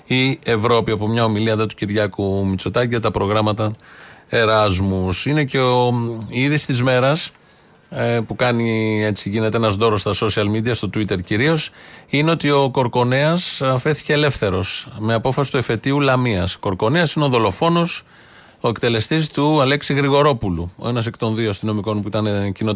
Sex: male